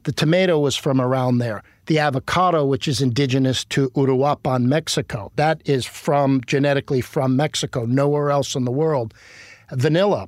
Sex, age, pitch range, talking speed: male, 50-69, 125-155 Hz, 150 wpm